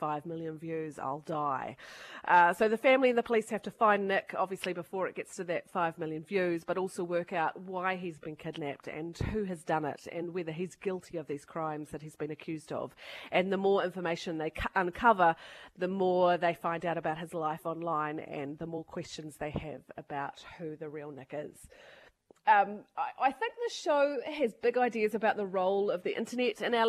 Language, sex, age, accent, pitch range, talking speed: English, female, 30-49, Australian, 165-205 Hz, 210 wpm